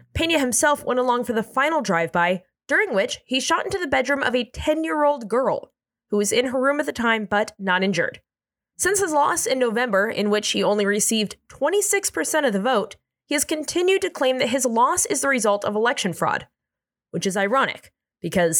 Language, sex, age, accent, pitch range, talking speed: English, female, 20-39, American, 205-300 Hz, 200 wpm